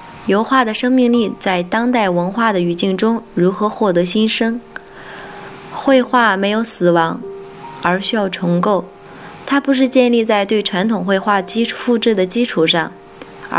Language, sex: Chinese, female